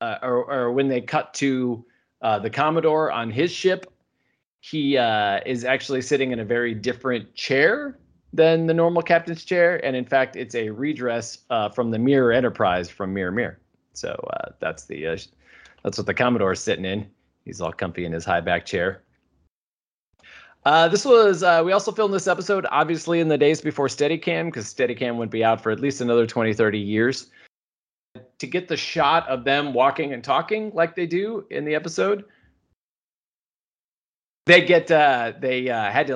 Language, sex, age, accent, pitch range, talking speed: English, male, 30-49, American, 110-155 Hz, 185 wpm